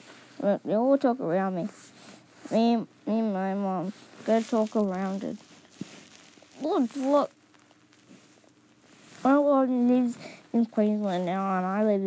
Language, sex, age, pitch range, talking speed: English, female, 20-39, 195-245 Hz, 120 wpm